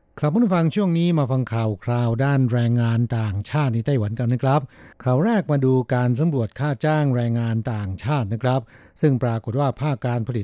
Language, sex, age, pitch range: Thai, male, 60-79, 115-145 Hz